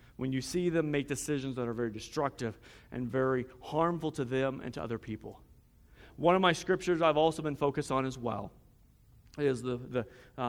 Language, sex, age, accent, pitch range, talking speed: English, male, 40-59, American, 125-170 Hz, 195 wpm